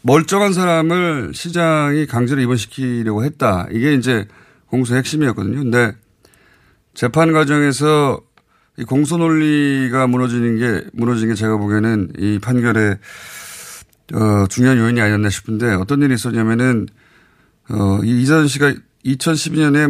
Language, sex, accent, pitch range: Korean, male, native, 115-150 Hz